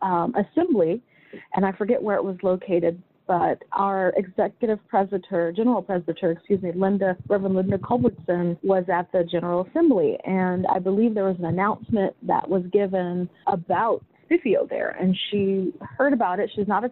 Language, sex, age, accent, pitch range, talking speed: English, female, 30-49, American, 180-210 Hz, 165 wpm